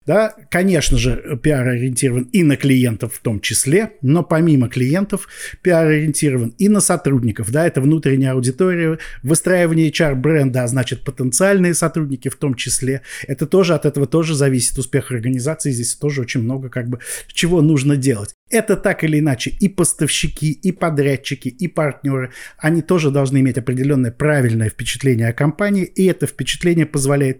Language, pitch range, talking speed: Russian, 125-165 Hz, 160 wpm